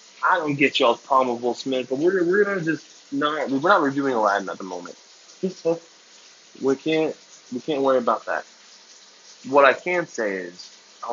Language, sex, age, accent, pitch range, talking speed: English, male, 20-39, American, 115-155 Hz, 185 wpm